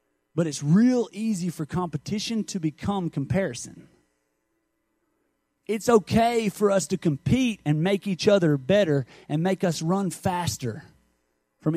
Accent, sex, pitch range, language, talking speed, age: American, male, 140-185 Hz, English, 135 wpm, 30-49